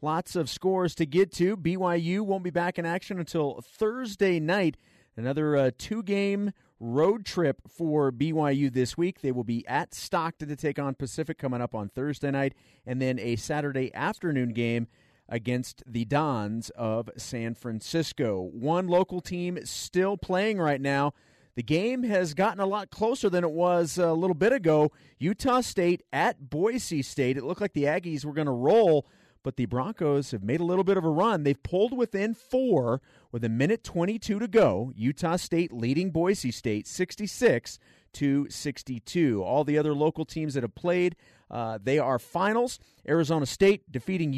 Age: 40-59